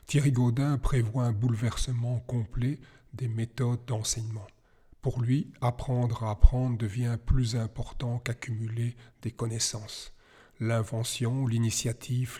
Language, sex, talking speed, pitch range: French, male, 105 wpm, 115-130 Hz